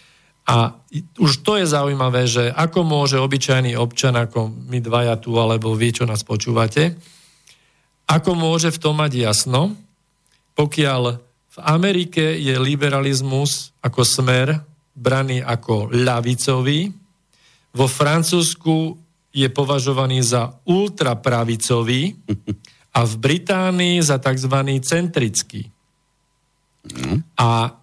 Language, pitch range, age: Slovak, 120-150 Hz, 50-69